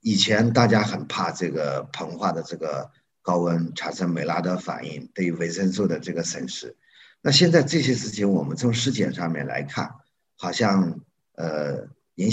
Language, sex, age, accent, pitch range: Chinese, male, 50-69, native, 90-140 Hz